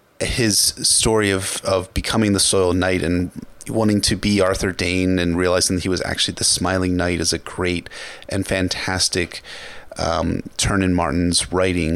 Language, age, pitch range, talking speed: English, 30-49, 90-110 Hz, 165 wpm